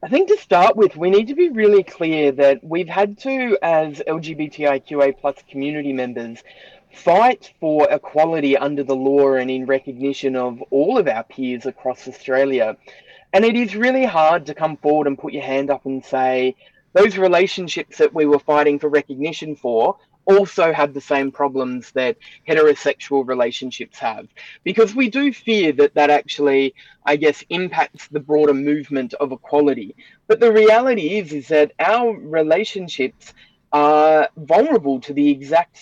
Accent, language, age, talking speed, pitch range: Australian, English, 20-39, 165 wpm, 140-185 Hz